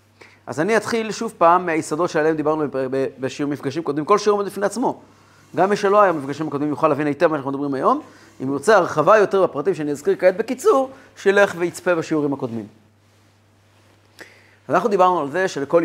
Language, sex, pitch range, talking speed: Hebrew, male, 125-185 Hz, 180 wpm